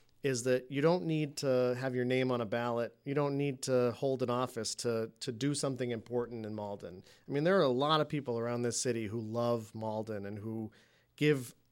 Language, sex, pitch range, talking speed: English, male, 110-145 Hz, 220 wpm